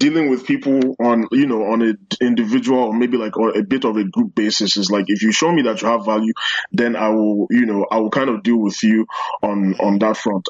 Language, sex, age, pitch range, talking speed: English, male, 20-39, 105-125 Hz, 250 wpm